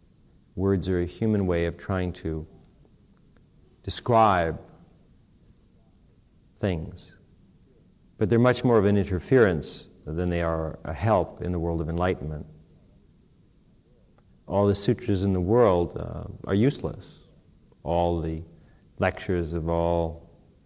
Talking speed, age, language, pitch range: 120 wpm, 50-69, English, 85-100 Hz